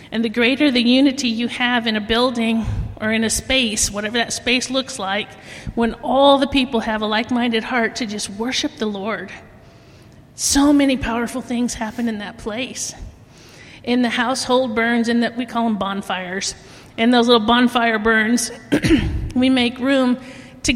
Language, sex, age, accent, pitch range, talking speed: English, female, 40-59, American, 230-265 Hz, 170 wpm